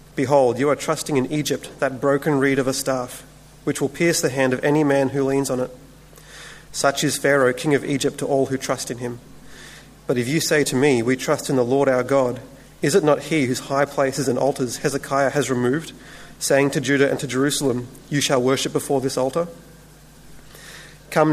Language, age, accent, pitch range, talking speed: English, 30-49, Australian, 130-150 Hz, 210 wpm